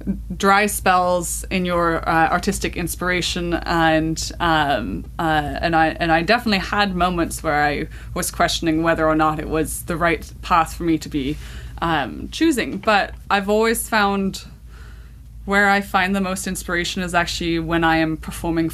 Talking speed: 165 wpm